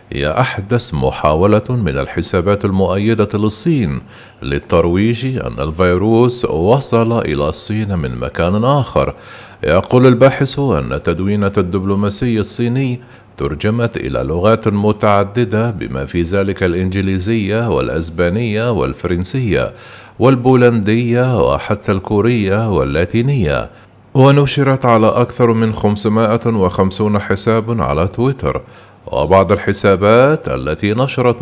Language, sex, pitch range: Arabic, male, 95-120 Hz